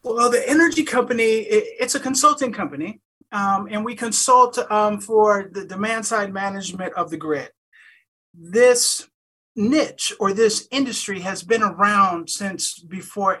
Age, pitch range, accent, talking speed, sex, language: 30-49, 180-225 Hz, American, 140 wpm, male, English